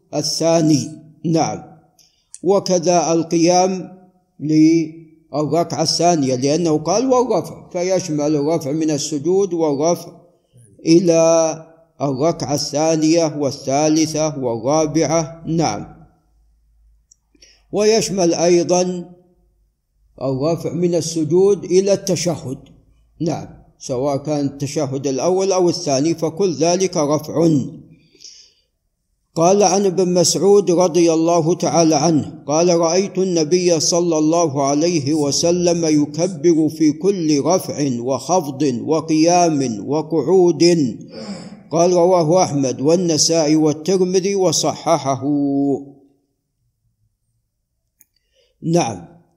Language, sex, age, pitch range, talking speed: Arabic, male, 50-69, 145-175 Hz, 80 wpm